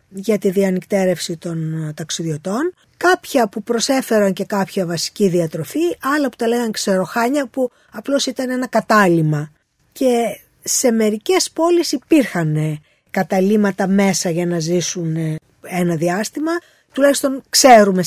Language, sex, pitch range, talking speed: Greek, female, 185-265 Hz, 120 wpm